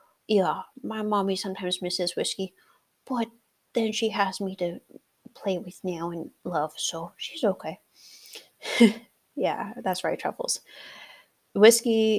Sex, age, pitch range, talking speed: female, 30-49, 190-235 Hz, 125 wpm